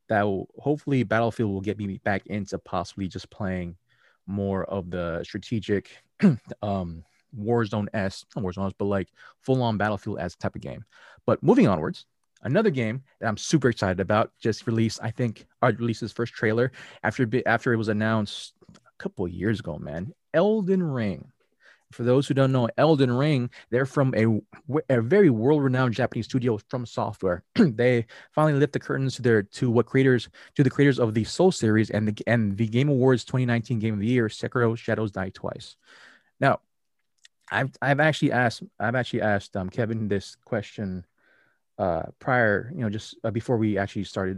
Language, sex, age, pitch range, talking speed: English, male, 20-39, 100-125 Hz, 180 wpm